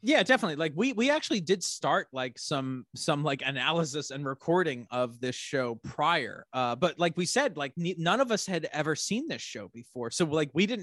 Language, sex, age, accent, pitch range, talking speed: English, male, 30-49, American, 125-175 Hz, 210 wpm